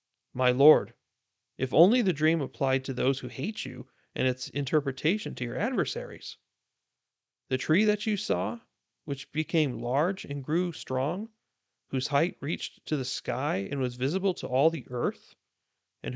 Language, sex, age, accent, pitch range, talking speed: English, male, 30-49, American, 125-160 Hz, 160 wpm